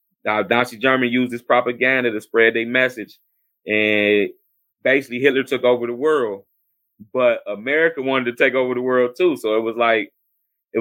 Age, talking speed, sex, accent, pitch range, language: 20-39, 170 wpm, male, American, 110-125 Hz, English